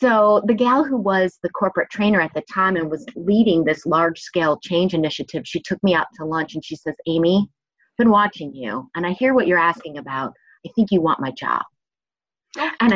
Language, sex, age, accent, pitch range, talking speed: English, female, 30-49, American, 165-230 Hz, 215 wpm